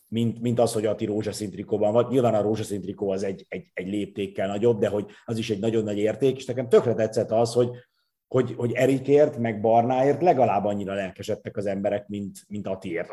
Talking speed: 195 wpm